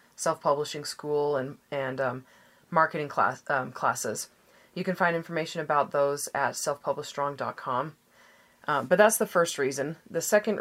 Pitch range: 145-175 Hz